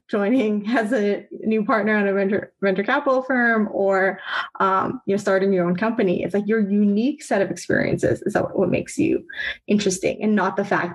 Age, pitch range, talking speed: 20-39, 190-245 Hz, 195 wpm